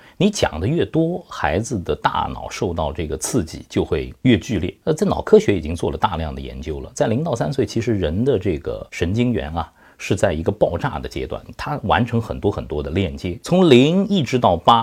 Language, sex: Chinese, male